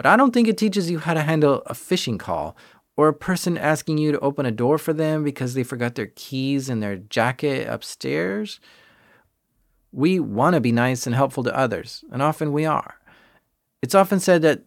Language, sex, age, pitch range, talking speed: English, male, 30-49, 135-170 Hz, 205 wpm